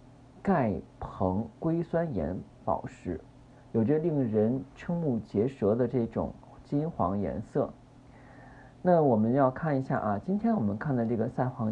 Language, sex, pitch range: Chinese, male, 110-140 Hz